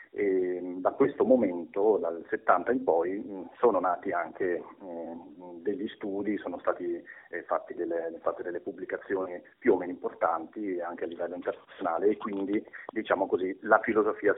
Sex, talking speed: male, 150 wpm